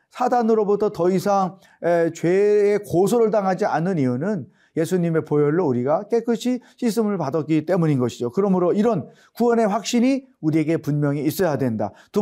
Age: 40-59